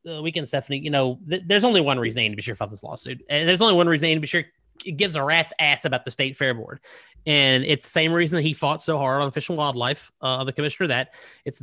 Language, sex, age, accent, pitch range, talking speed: English, male, 30-49, American, 130-165 Hz, 280 wpm